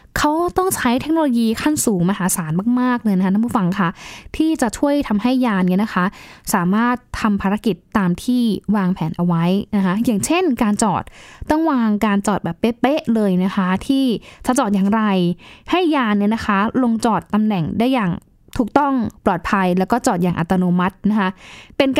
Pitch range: 190-240 Hz